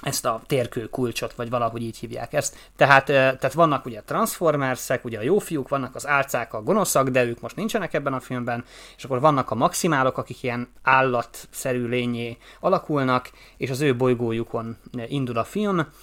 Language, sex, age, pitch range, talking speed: Hungarian, male, 30-49, 115-135 Hz, 170 wpm